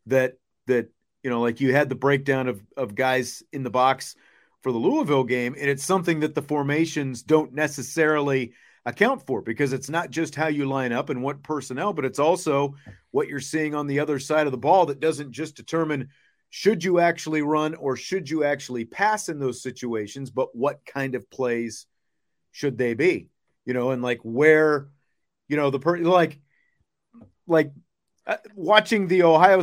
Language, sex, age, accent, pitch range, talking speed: English, male, 40-59, American, 135-185 Hz, 185 wpm